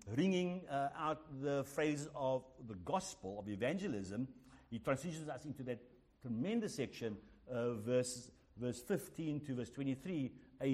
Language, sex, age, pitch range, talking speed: English, male, 60-79, 100-140 Hz, 140 wpm